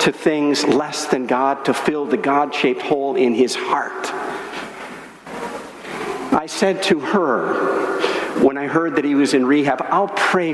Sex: male